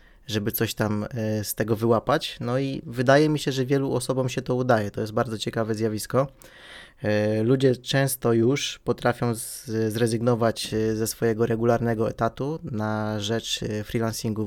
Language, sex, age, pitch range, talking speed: Polish, male, 20-39, 110-125 Hz, 140 wpm